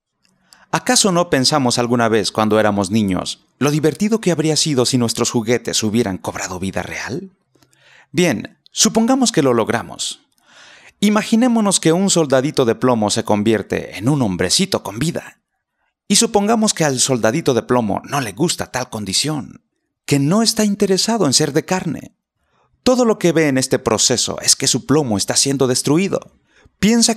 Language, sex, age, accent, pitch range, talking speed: Spanish, male, 30-49, Mexican, 115-185 Hz, 160 wpm